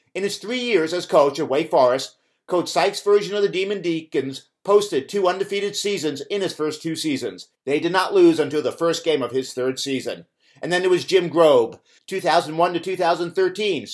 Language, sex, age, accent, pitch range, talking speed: English, male, 50-69, American, 155-200 Hz, 190 wpm